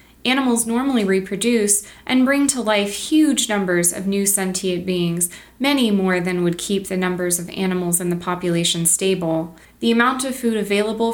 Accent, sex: American, female